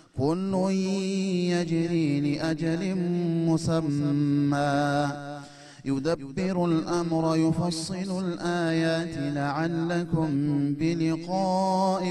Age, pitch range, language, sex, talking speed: 30-49, 145-175 Hz, Amharic, male, 60 wpm